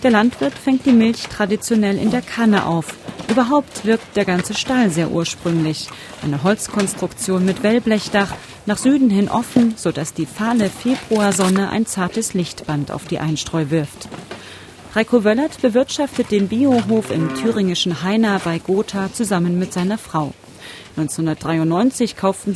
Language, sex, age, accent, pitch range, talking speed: German, female, 30-49, German, 165-225 Hz, 140 wpm